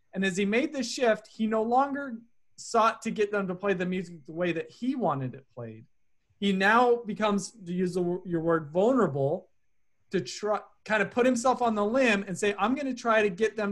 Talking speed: 220 wpm